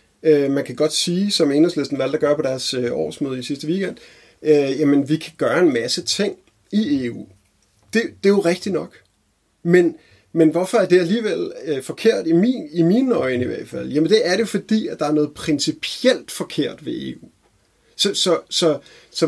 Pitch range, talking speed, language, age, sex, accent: 140-190 Hz, 195 wpm, Danish, 30-49, male, native